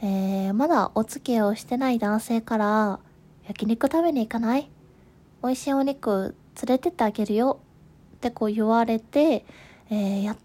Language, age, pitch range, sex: Japanese, 20-39, 190-255 Hz, female